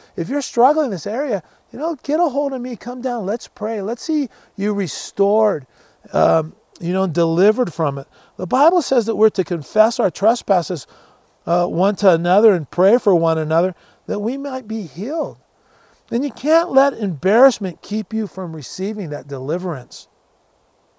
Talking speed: 175 wpm